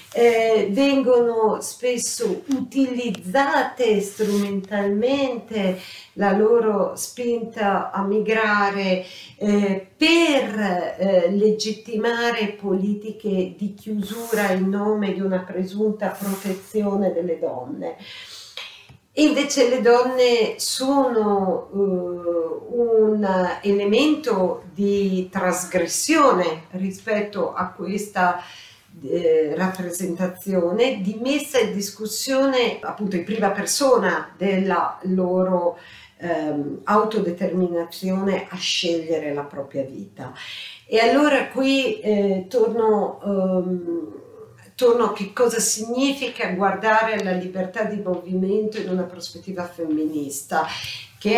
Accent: native